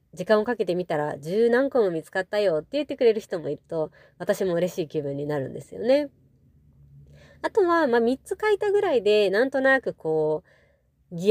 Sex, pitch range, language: female, 160-255 Hz, Japanese